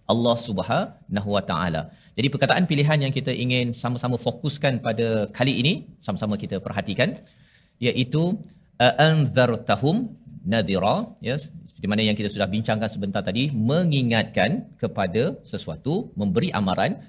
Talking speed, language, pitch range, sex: 125 wpm, Malayalam, 110-140 Hz, male